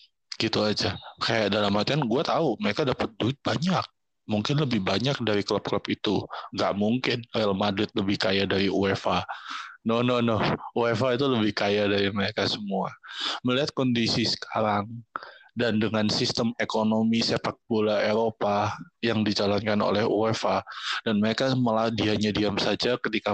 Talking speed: 140 wpm